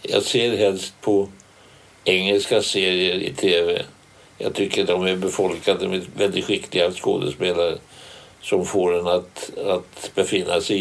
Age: 60-79